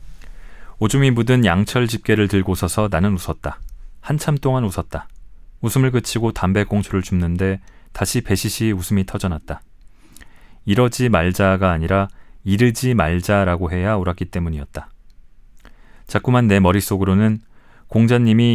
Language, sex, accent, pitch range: Korean, male, native, 95-115 Hz